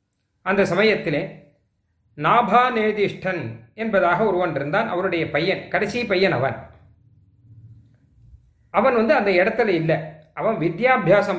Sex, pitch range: male, 145-220 Hz